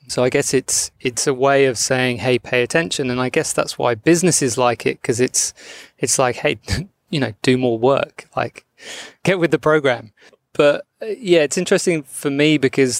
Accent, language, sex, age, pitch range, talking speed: British, English, male, 20-39, 125-150 Hz, 195 wpm